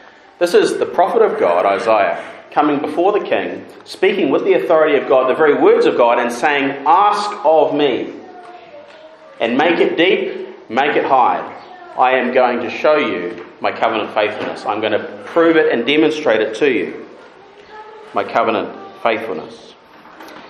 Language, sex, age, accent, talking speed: English, male, 30-49, Australian, 165 wpm